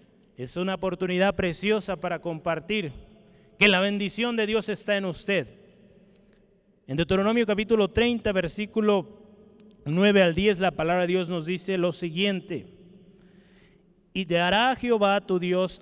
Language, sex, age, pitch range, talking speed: Spanish, male, 30-49, 165-205 Hz, 135 wpm